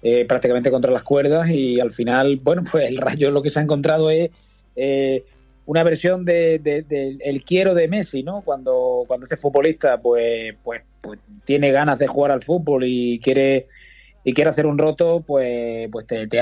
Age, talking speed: 20-39, 195 wpm